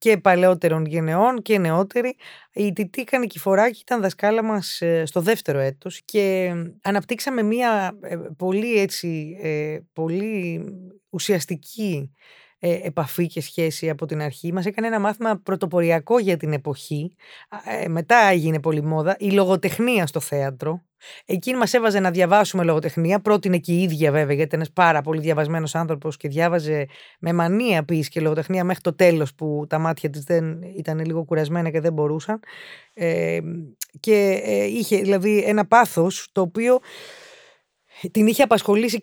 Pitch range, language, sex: 160-210 Hz, Greek, female